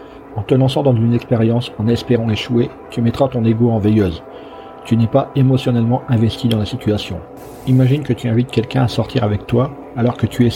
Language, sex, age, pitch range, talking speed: French, male, 40-59, 110-130 Hz, 205 wpm